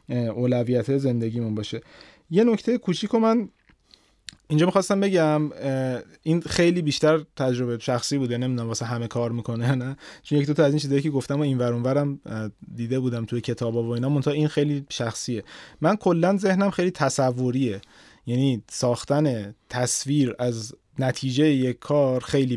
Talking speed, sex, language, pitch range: 150 wpm, male, Persian, 125-155 Hz